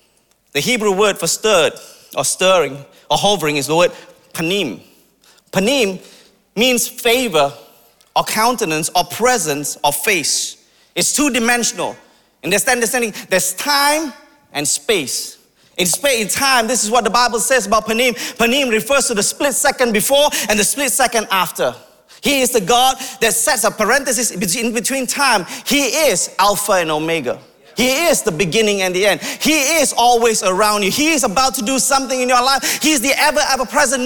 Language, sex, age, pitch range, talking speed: English, male, 30-49, 200-260 Hz, 170 wpm